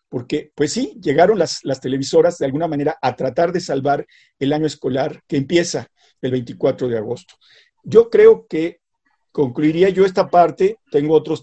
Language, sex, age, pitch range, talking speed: Spanish, male, 50-69, 145-185 Hz, 170 wpm